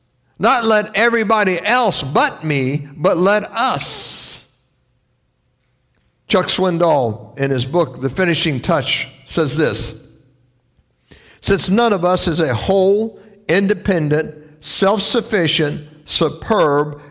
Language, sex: English, male